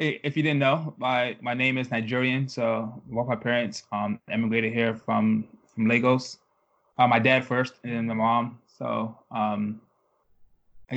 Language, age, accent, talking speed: English, 20-39, American, 165 wpm